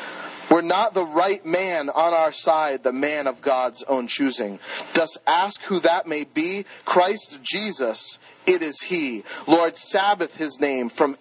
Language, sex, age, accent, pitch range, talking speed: English, male, 40-59, American, 130-180 Hz, 160 wpm